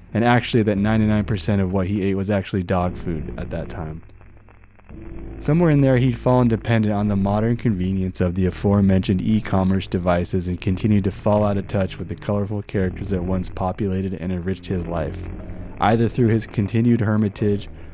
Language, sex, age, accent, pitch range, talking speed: English, male, 20-39, American, 95-110 Hz, 175 wpm